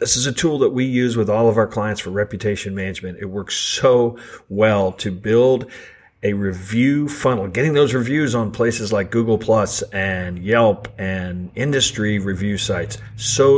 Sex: male